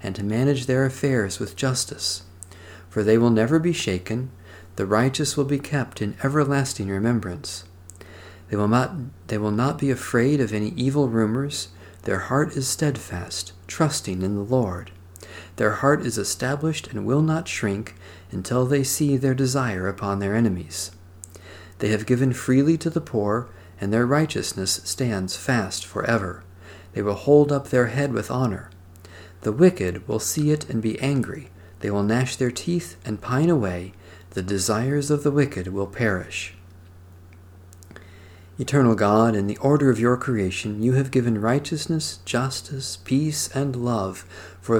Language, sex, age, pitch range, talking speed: English, male, 50-69, 90-135 Hz, 160 wpm